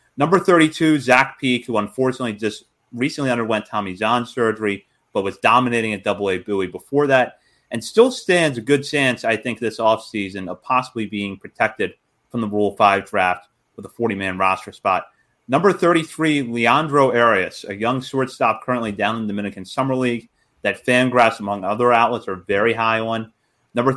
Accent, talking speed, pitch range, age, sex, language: American, 180 wpm, 105-130 Hz, 30-49, male, English